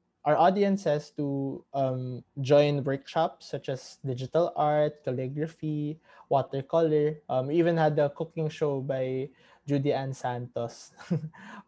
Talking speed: 120 wpm